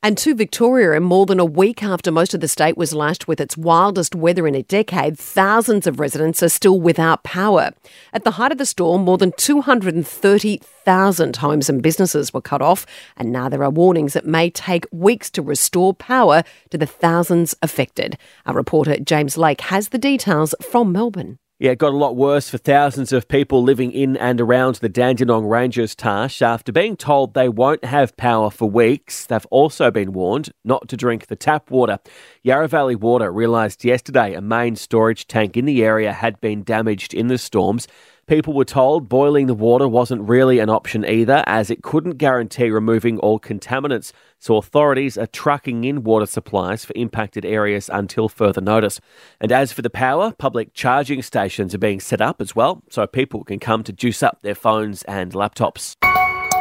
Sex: female